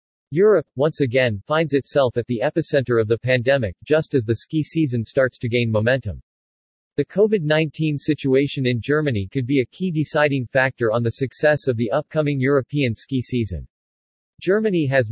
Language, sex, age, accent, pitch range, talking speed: English, male, 40-59, American, 120-150 Hz, 165 wpm